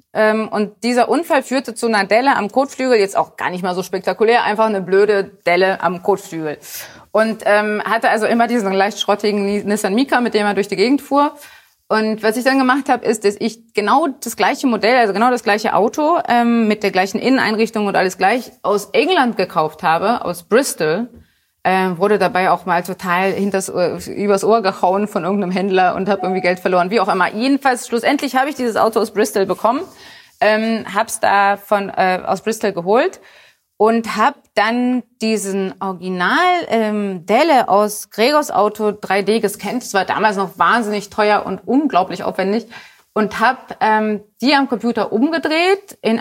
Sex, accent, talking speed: female, German, 180 wpm